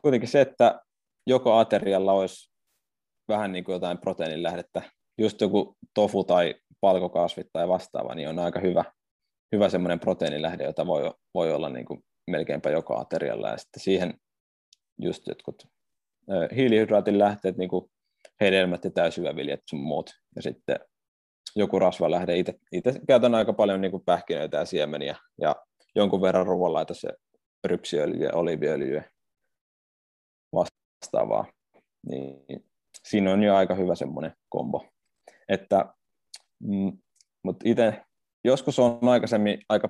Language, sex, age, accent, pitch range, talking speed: Finnish, male, 20-39, native, 90-105 Hz, 120 wpm